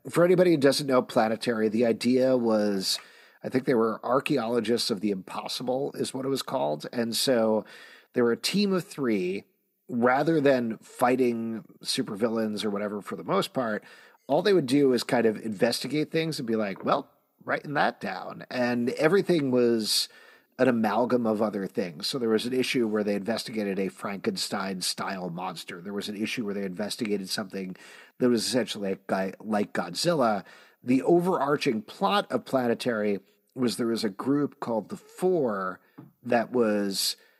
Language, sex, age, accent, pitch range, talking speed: English, male, 40-59, American, 105-130 Hz, 170 wpm